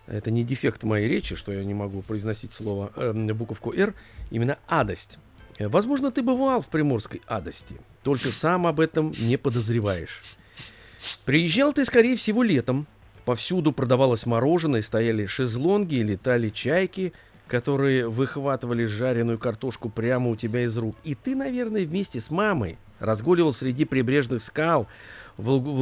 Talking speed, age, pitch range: 140 wpm, 50-69, 110-150 Hz